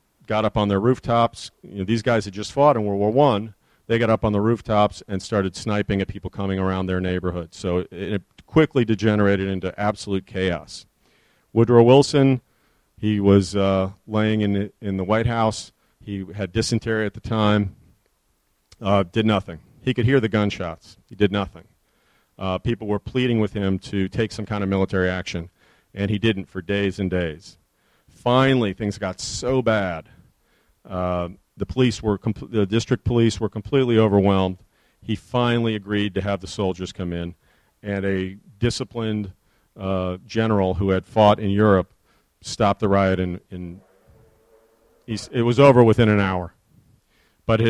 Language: English